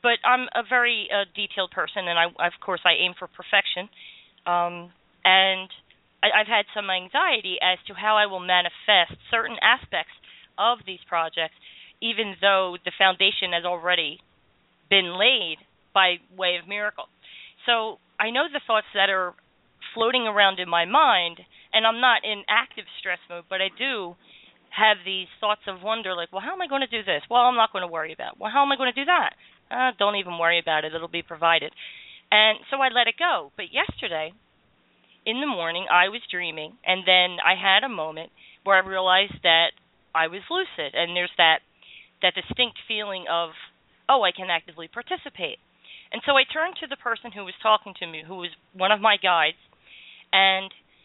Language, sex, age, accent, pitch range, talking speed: English, female, 40-59, American, 180-225 Hz, 195 wpm